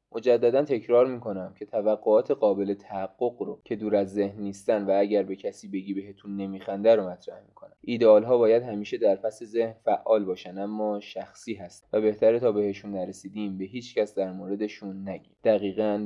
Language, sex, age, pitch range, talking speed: Persian, male, 20-39, 100-120 Hz, 170 wpm